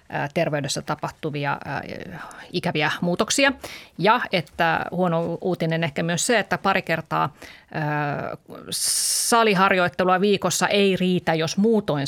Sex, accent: female, native